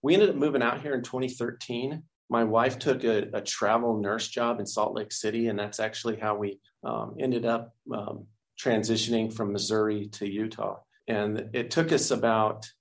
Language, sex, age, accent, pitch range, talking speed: English, male, 40-59, American, 105-120 Hz, 185 wpm